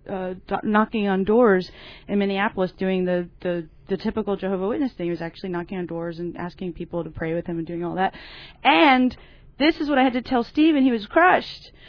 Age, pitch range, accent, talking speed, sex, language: 30-49, 190-245 Hz, American, 225 wpm, female, English